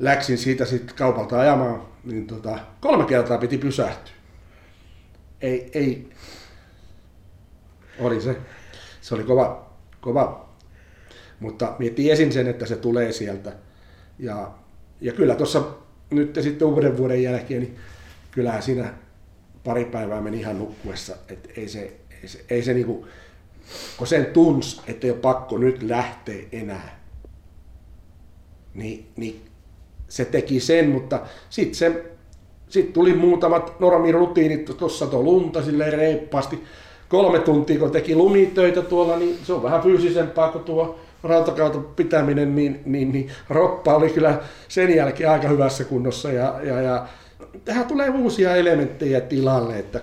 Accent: native